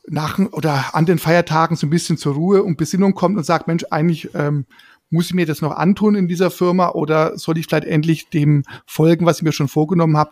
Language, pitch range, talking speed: German, 155-185 Hz, 225 wpm